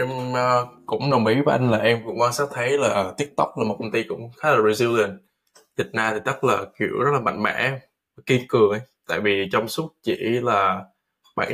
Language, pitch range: Vietnamese, 105-130 Hz